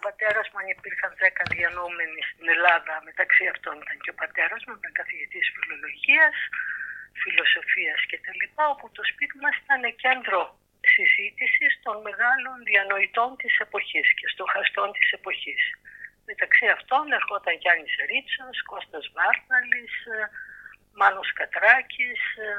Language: Greek